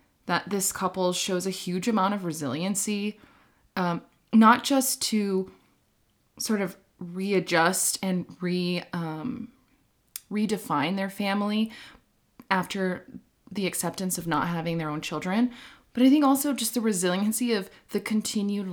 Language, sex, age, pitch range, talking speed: English, female, 20-39, 165-205 Hz, 130 wpm